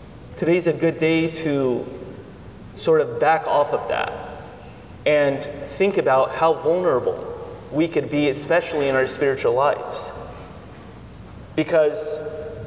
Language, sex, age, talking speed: English, male, 30-49, 120 wpm